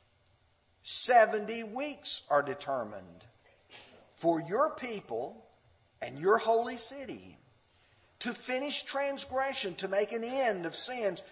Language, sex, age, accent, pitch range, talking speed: English, male, 50-69, American, 155-245 Hz, 105 wpm